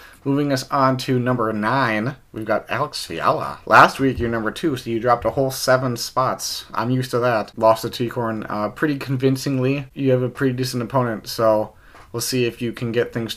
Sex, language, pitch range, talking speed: male, English, 115-145 Hz, 205 wpm